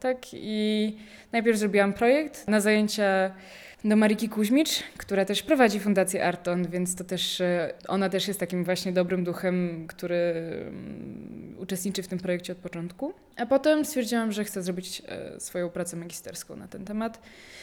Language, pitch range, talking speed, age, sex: Polish, 190-240 Hz, 150 wpm, 20-39, female